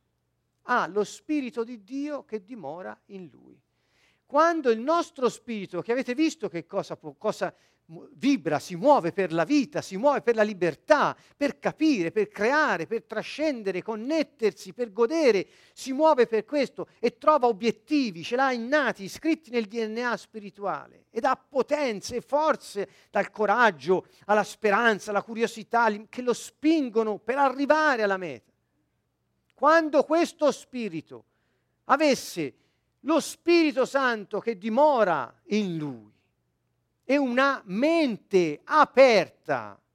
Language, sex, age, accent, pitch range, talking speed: Italian, male, 50-69, native, 190-280 Hz, 130 wpm